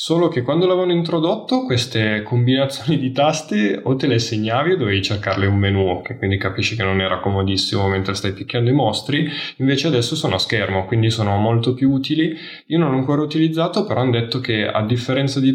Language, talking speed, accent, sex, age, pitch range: Italian, 200 wpm, native, male, 10-29, 105-140 Hz